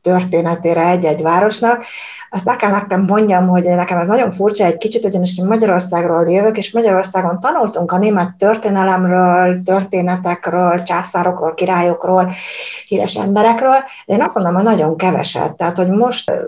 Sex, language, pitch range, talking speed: female, Hungarian, 175-220 Hz, 140 wpm